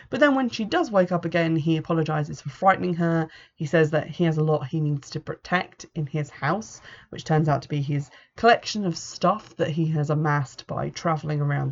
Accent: British